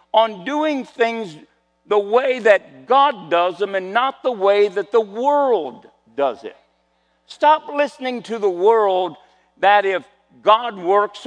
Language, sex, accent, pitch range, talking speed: English, male, American, 135-215 Hz, 145 wpm